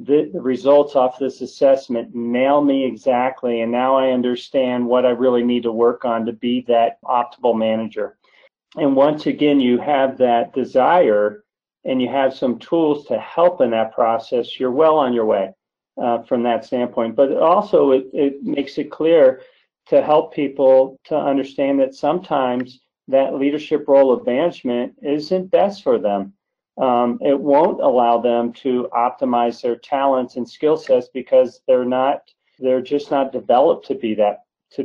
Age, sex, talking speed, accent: 40-59, male, 165 wpm, American